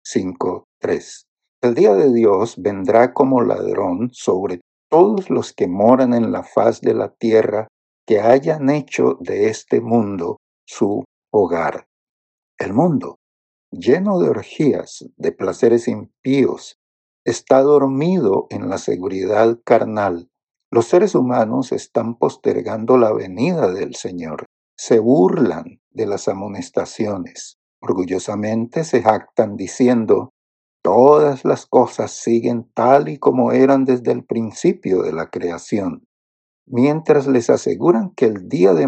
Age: 60-79